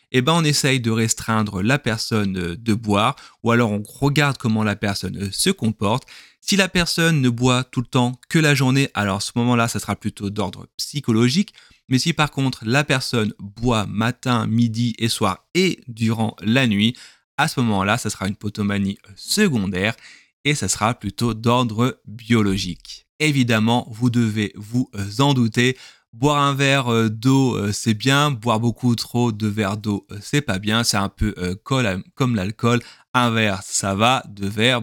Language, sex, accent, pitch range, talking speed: French, male, French, 105-130 Hz, 170 wpm